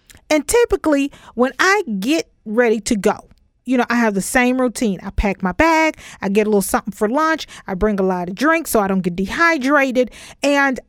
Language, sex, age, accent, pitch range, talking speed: English, female, 40-59, American, 210-315 Hz, 210 wpm